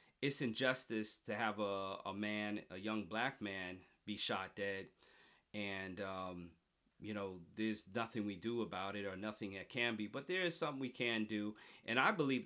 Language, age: English, 40-59